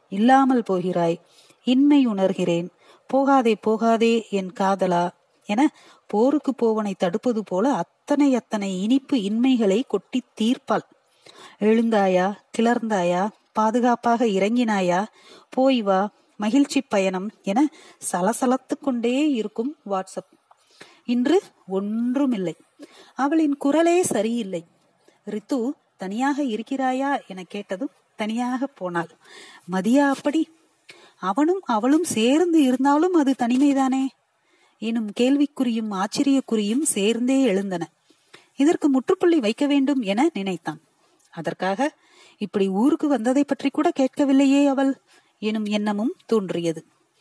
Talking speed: 90 wpm